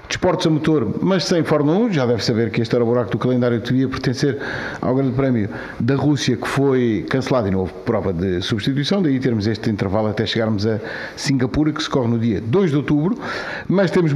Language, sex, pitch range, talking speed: Portuguese, male, 115-150 Hz, 220 wpm